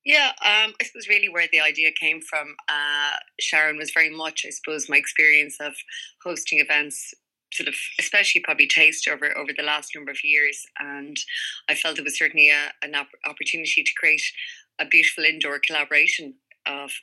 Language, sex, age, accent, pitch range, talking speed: English, female, 20-39, Irish, 140-160 Hz, 175 wpm